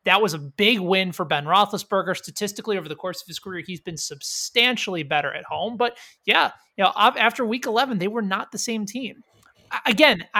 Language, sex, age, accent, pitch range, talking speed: English, male, 30-49, American, 175-230 Hz, 200 wpm